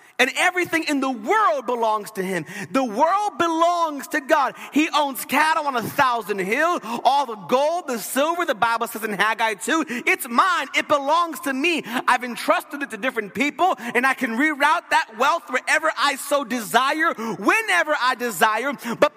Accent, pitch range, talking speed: American, 215-310 Hz, 180 wpm